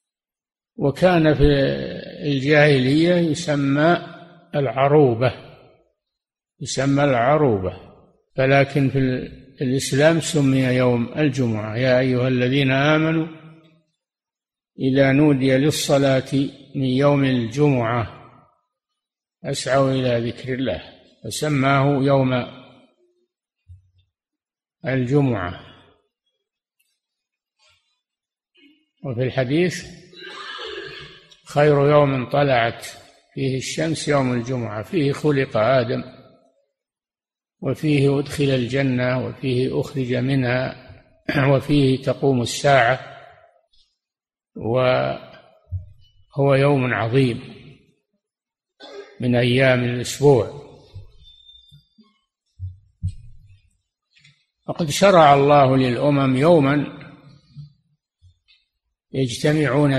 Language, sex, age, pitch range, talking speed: Arabic, male, 60-79, 125-150 Hz, 65 wpm